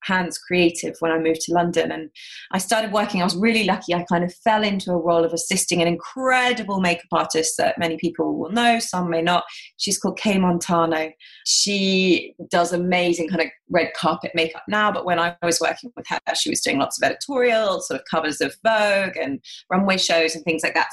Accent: British